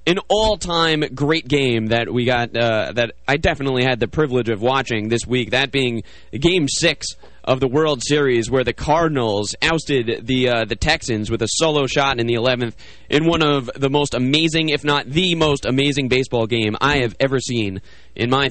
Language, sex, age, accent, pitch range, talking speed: English, male, 20-39, American, 115-155 Hz, 195 wpm